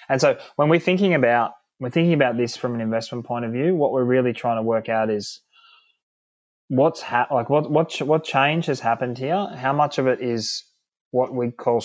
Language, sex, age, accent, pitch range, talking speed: English, male, 20-39, Australian, 115-135 Hz, 215 wpm